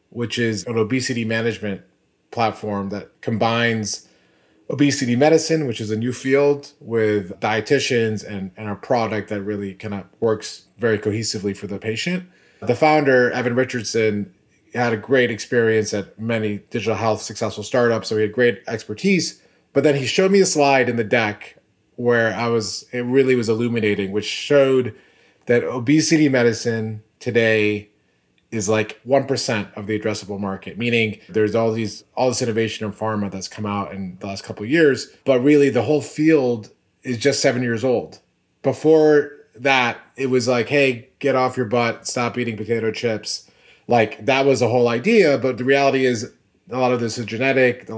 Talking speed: 175 wpm